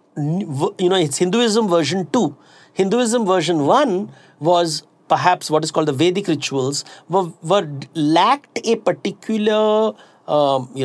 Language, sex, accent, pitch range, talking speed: English, male, Indian, 150-200 Hz, 135 wpm